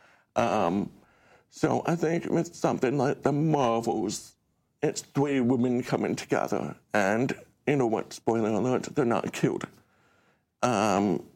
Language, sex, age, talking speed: English, male, 60-79, 125 wpm